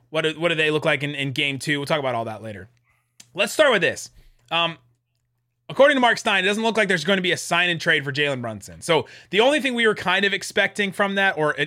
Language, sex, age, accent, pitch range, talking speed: English, male, 20-39, American, 135-185 Hz, 265 wpm